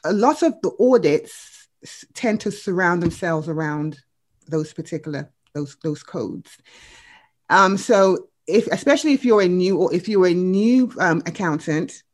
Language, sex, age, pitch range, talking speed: English, female, 30-49, 160-210 Hz, 150 wpm